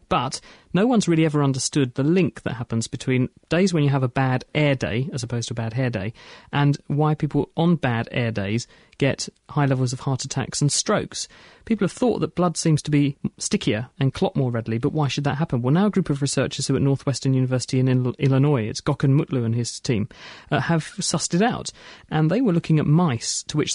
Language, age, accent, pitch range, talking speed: English, 40-59, British, 130-155 Hz, 225 wpm